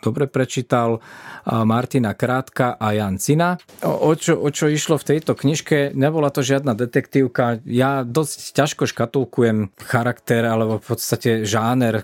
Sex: male